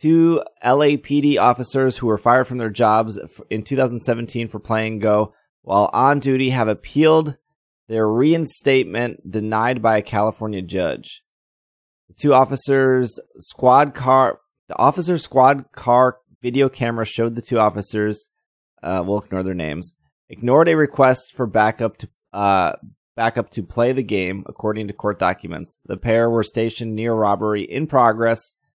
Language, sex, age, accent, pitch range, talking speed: English, male, 20-39, American, 105-130 Hz, 145 wpm